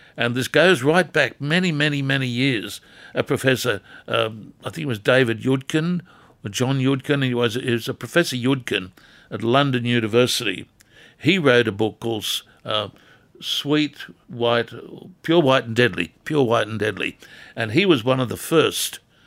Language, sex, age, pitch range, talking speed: English, male, 60-79, 115-140 Hz, 160 wpm